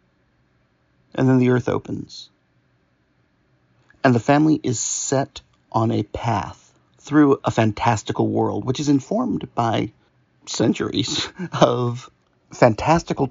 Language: English